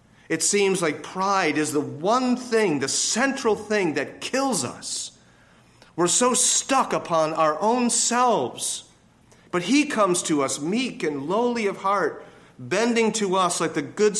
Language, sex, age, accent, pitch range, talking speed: English, male, 40-59, American, 140-185 Hz, 155 wpm